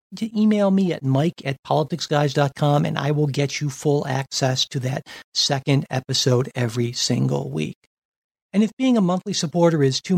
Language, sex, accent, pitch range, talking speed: English, male, American, 135-175 Hz, 170 wpm